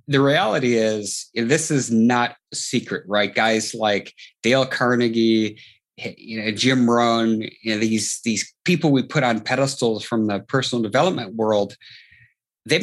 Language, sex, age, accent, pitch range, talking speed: English, male, 30-49, American, 110-135 Hz, 150 wpm